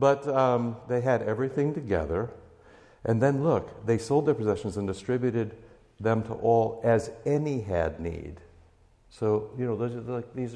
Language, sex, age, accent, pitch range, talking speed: English, male, 60-79, American, 95-120 Hz, 150 wpm